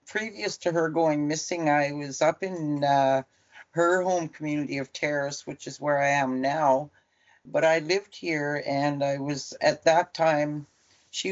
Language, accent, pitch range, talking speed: English, American, 140-170 Hz, 170 wpm